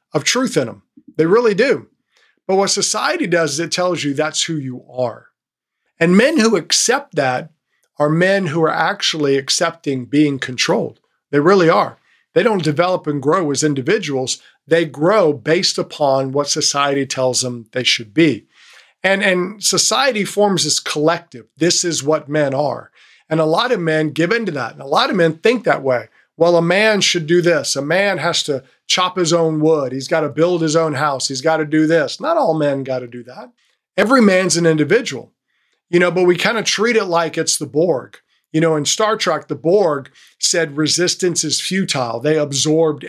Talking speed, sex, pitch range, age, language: 200 wpm, male, 145-180 Hz, 50-69, English